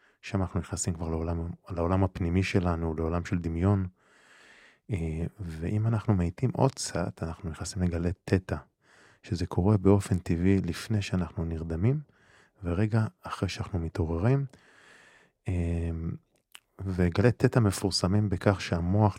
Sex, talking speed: male, 115 wpm